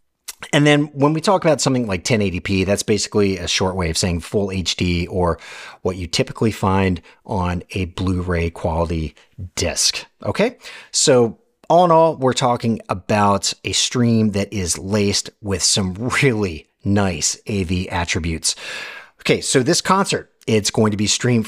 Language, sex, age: English, male, 30-49